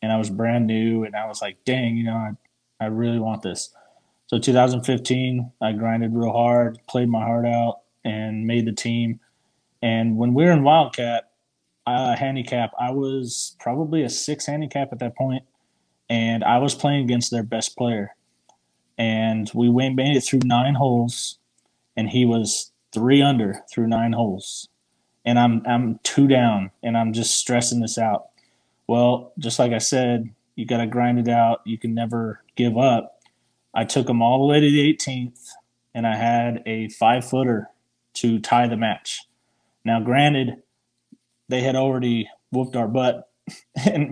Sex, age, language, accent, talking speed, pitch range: male, 20-39, English, American, 175 wpm, 115-130 Hz